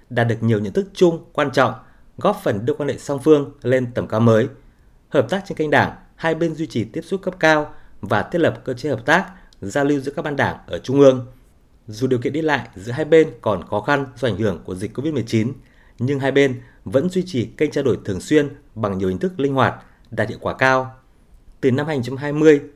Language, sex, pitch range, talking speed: Vietnamese, male, 115-145 Hz, 235 wpm